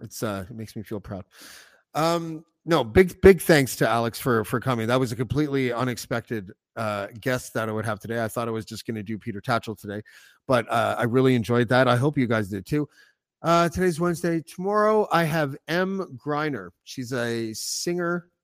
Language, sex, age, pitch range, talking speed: English, male, 40-59, 110-145 Hz, 205 wpm